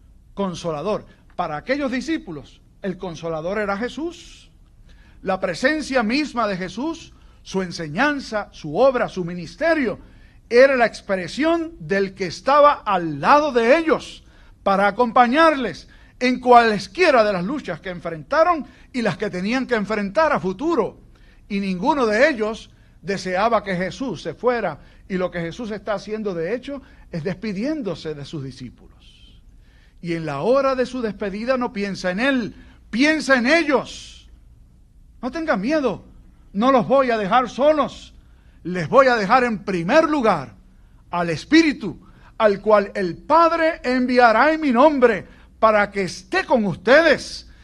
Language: Spanish